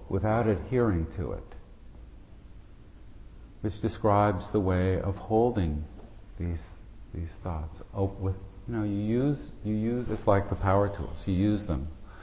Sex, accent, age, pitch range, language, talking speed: male, American, 50-69, 80-100 Hz, English, 135 wpm